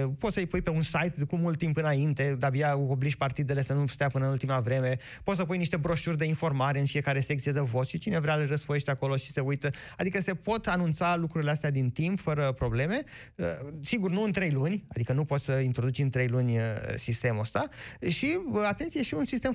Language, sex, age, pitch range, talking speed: Romanian, male, 30-49, 135-185 Hz, 225 wpm